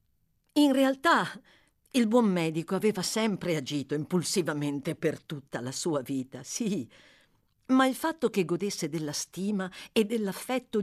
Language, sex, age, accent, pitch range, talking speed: Italian, female, 50-69, native, 145-225 Hz, 135 wpm